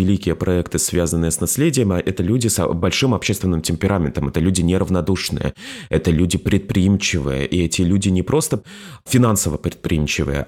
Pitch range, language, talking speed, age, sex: 85-105 Hz, Russian, 135 wpm, 20-39, male